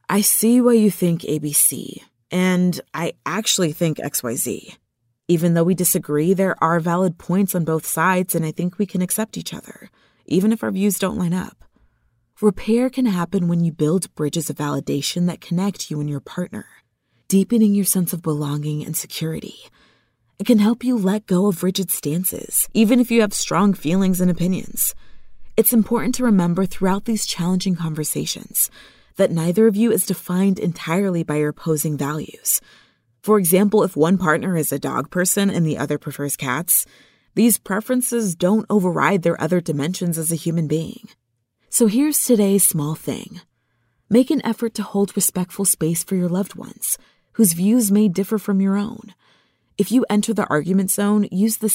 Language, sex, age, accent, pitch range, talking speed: English, female, 20-39, American, 160-205 Hz, 175 wpm